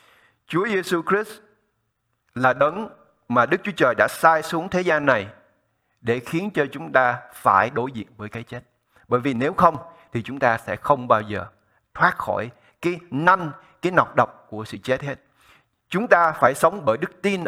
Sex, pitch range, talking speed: male, 115-165 Hz, 190 wpm